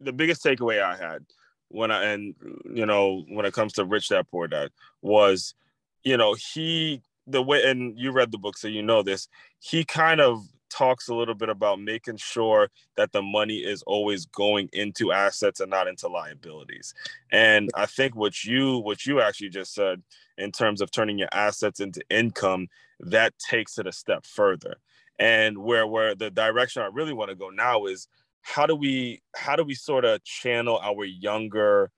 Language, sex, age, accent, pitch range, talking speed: English, male, 20-39, American, 105-130 Hz, 190 wpm